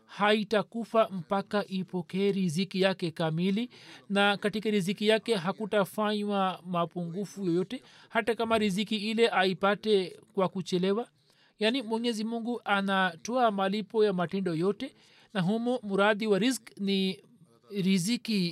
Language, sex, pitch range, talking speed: Swahili, male, 185-220 Hz, 115 wpm